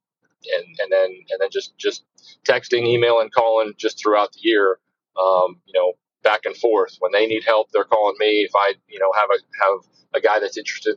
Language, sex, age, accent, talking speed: English, male, 40-59, American, 215 wpm